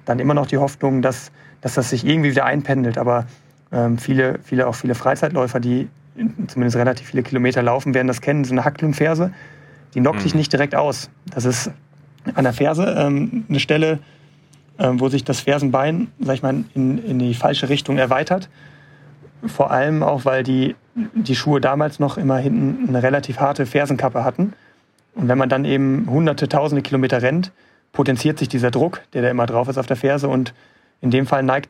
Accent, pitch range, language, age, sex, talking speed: German, 130-150 Hz, German, 30-49, male, 180 wpm